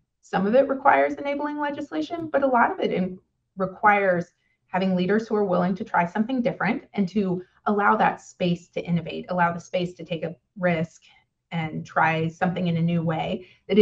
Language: English